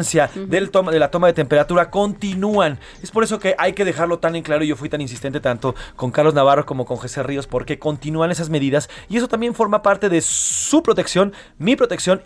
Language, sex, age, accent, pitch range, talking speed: Spanish, male, 30-49, Mexican, 145-195 Hz, 215 wpm